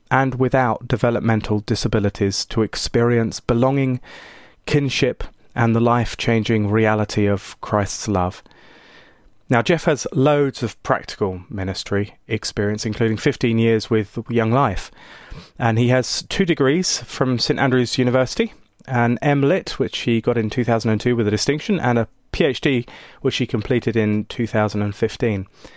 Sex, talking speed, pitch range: male, 130 wpm, 110-135 Hz